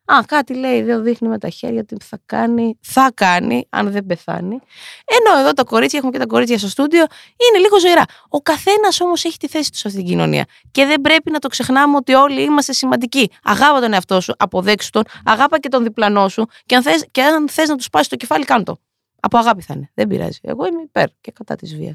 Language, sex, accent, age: Greek, female, native, 20-39